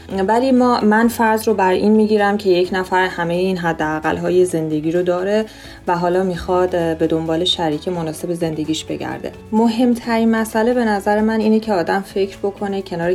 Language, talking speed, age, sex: Persian, 175 wpm, 30-49, female